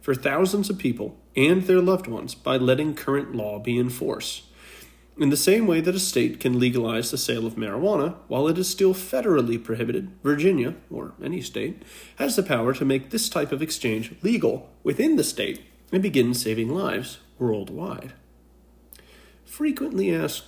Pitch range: 115-165 Hz